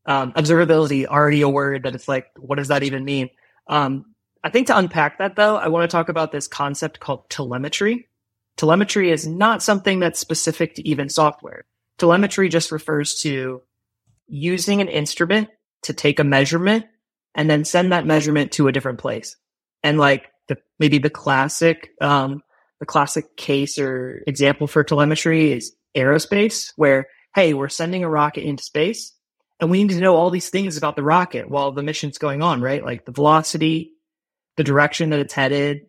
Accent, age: American, 30-49